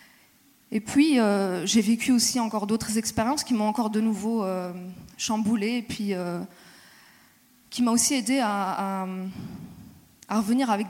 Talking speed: 155 wpm